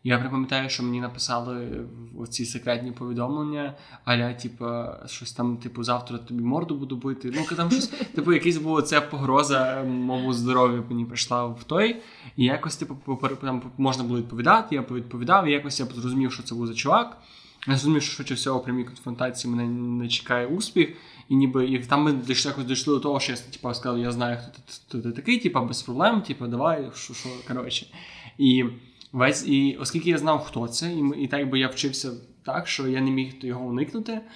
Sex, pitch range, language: male, 125-150 Hz, Ukrainian